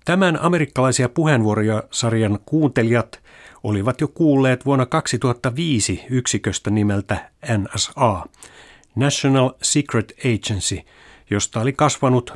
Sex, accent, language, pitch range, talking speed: male, native, Finnish, 105-140 Hz, 90 wpm